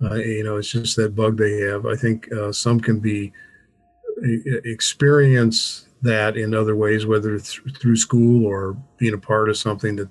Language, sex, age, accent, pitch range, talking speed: English, male, 50-69, American, 105-130 Hz, 180 wpm